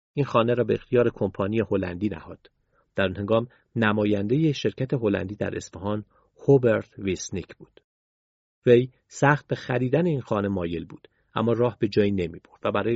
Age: 40-59